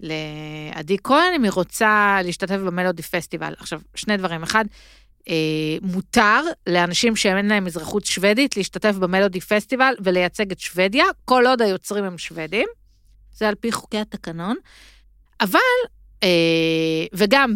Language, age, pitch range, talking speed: Hebrew, 50-69, 180-230 Hz, 130 wpm